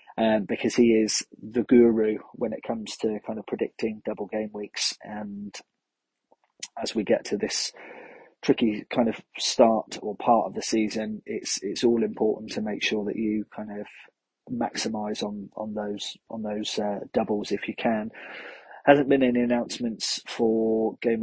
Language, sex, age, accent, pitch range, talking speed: English, male, 30-49, British, 105-120 Hz, 165 wpm